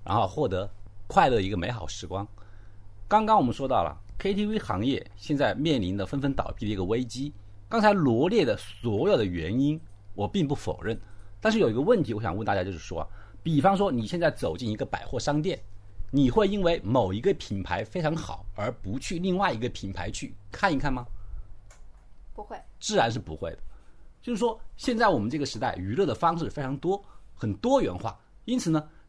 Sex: male